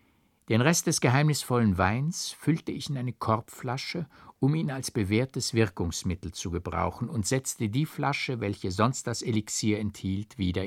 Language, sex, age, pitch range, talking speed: German, male, 60-79, 105-140 Hz, 150 wpm